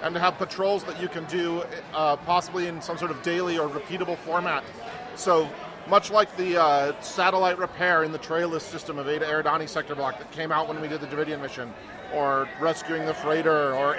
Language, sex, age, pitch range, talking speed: English, male, 40-59, 155-190 Hz, 205 wpm